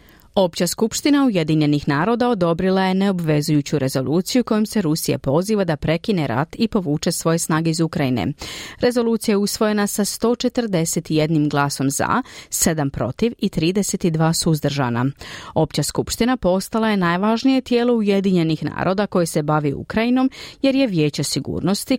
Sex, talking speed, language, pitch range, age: female, 135 wpm, Croatian, 155-220 Hz, 40-59